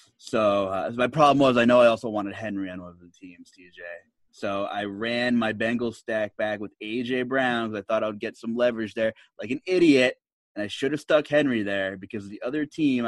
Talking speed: 230 wpm